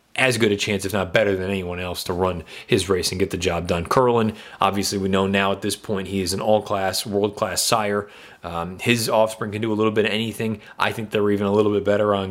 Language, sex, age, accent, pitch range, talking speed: English, male, 30-49, American, 100-135 Hz, 255 wpm